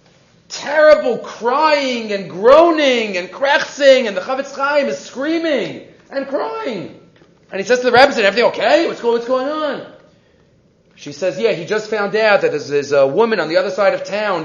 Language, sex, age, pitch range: English, male, 40-59, 180-270 Hz